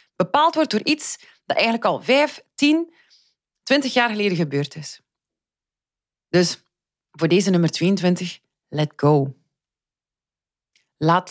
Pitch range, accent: 150-200 Hz, Dutch